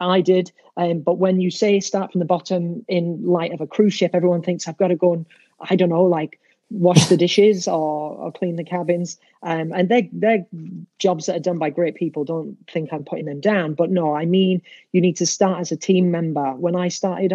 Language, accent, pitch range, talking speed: English, British, 165-190 Hz, 235 wpm